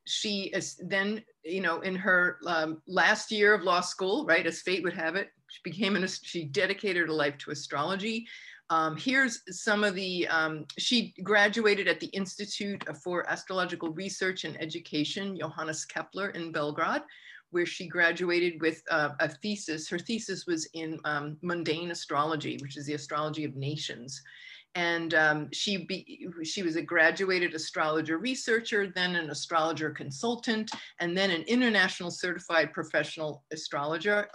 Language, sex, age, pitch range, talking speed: English, female, 50-69, 155-195 Hz, 155 wpm